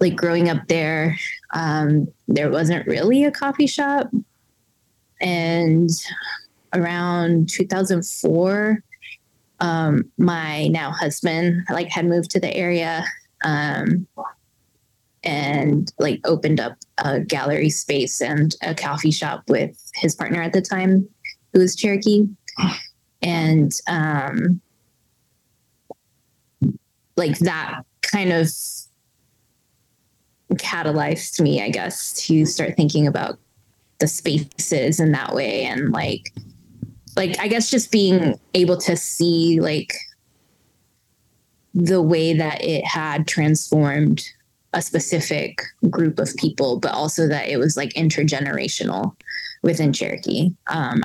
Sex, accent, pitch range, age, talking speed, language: female, American, 150-180 Hz, 20-39, 115 wpm, English